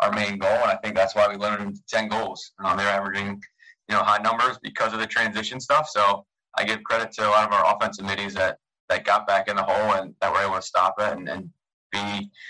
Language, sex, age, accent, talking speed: English, male, 20-39, American, 270 wpm